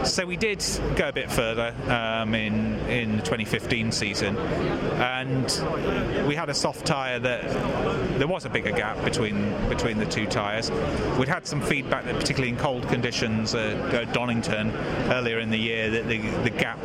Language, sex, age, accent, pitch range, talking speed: English, male, 30-49, British, 110-135 Hz, 180 wpm